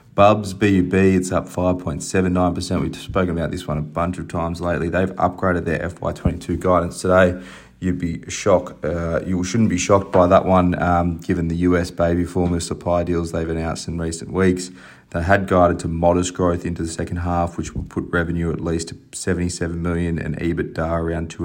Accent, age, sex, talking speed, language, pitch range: Australian, 30-49, male, 190 wpm, English, 80-90 Hz